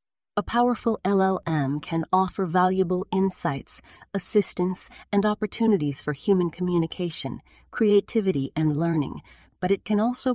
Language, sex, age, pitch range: English, female, 40-59, 165-190 Hz